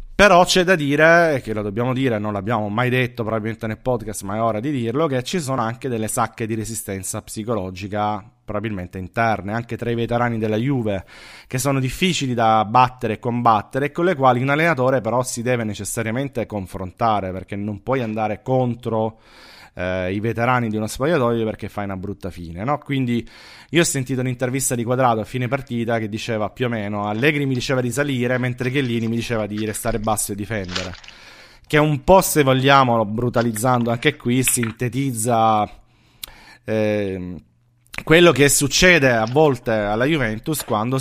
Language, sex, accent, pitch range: Italian, male, native, 110-130 Hz